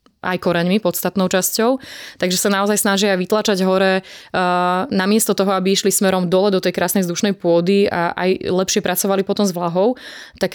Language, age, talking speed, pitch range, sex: Slovak, 20-39, 170 wpm, 175-195 Hz, female